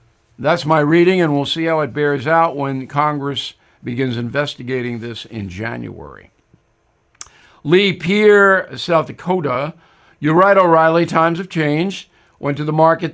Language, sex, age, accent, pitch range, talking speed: English, male, 50-69, American, 145-185 Hz, 140 wpm